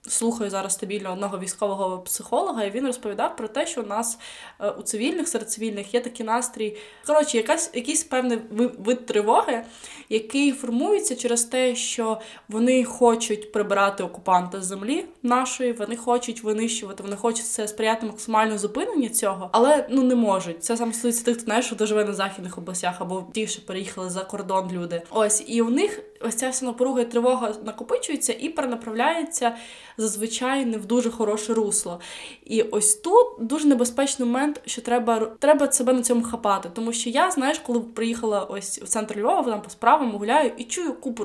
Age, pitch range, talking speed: 20-39, 215-255 Hz, 170 wpm